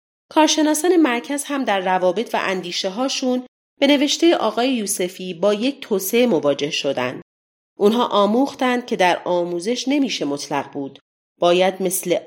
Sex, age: female, 40-59